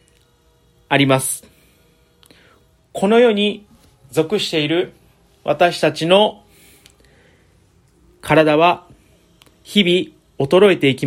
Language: Japanese